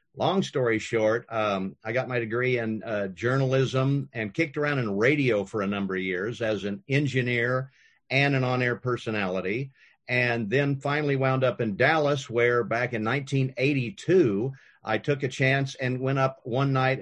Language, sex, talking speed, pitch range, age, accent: English, male, 170 wpm, 115-140 Hz, 50-69, American